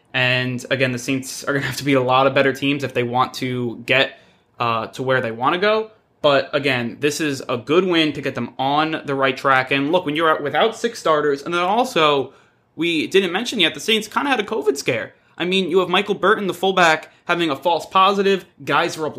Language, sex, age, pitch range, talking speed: English, male, 20-39, 140-195 Hz, 245 wpm